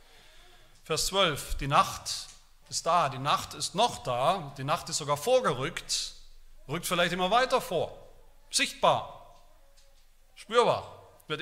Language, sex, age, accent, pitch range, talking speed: German, male, 40-59, German, 135-175 Hz, 125 wpm